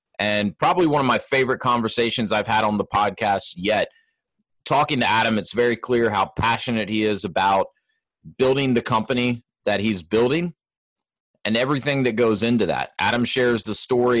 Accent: American